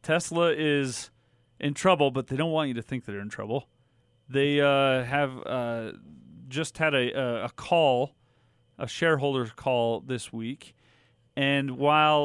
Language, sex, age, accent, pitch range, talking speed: English, male, 40-59, American, 130-165 Hz, 145 wpm